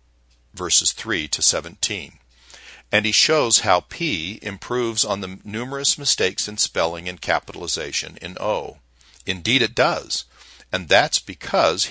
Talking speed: 130 wpm